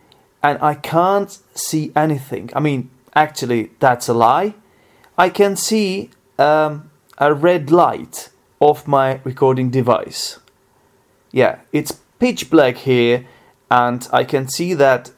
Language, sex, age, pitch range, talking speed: English, male, 30-49, 120-150 Hz, 125 wpm